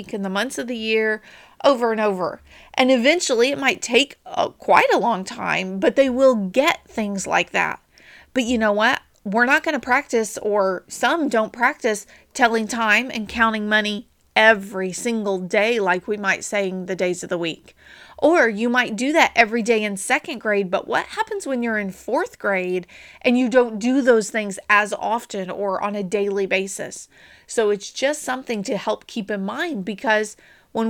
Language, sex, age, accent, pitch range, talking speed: English, female, 30-49, American, 205-265 Hz, 190 wpm